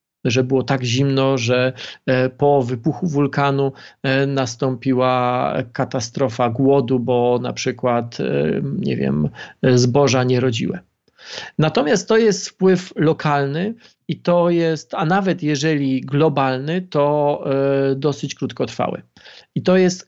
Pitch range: 130-170 Hz